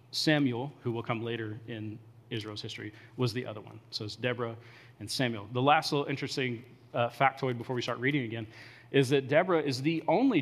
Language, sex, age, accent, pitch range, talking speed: English, male, 30-49, American, 120-145 Hz, 195 wpm